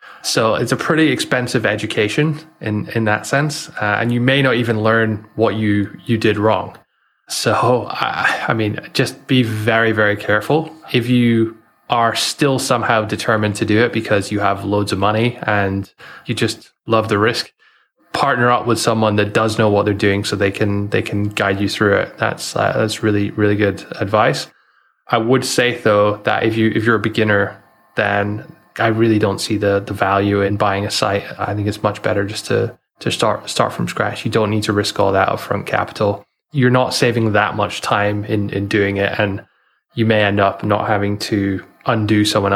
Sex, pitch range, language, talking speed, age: male, 100-115 Hz, English, 200 wpm, 20-39